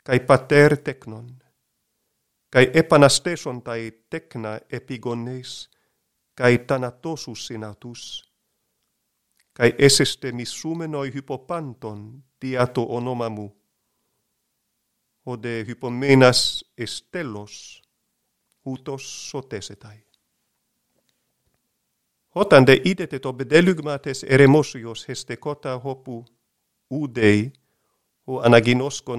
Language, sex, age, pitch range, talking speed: Greek, male, 50-69, 115-140 Hz, 70 wpm